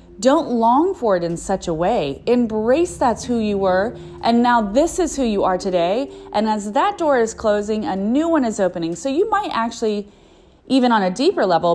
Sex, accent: female, American